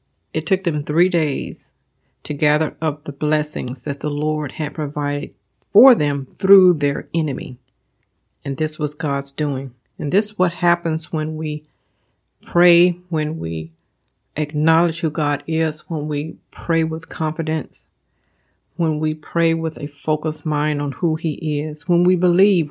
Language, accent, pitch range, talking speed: English, American, 150-180 Hz, 155 wpm